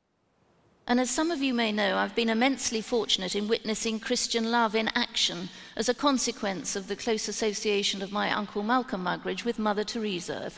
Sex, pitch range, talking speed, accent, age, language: female, 200-245 Hz, 185 wpm, British, 50-69, English